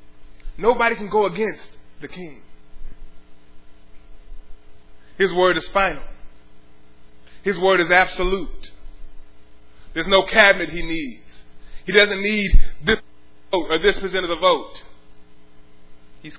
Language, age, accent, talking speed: English, 20-39, American, 115 wpm